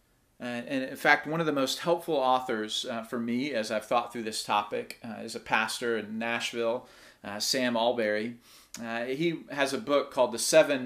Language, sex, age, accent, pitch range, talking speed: English, male, 40-59, American, 115-155 Hz, 200 wpm